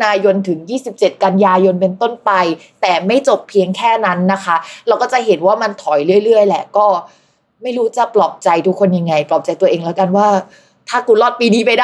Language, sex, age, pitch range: Thai, female, 20-39, 195-270 Hz